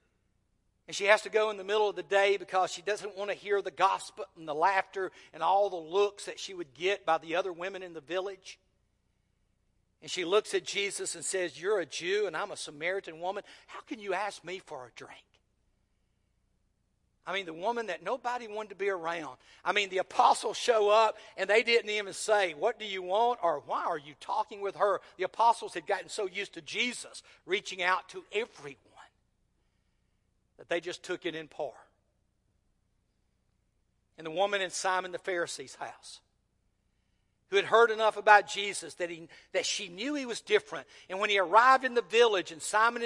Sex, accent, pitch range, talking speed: male, American, 170-220 Hz, 195 wpm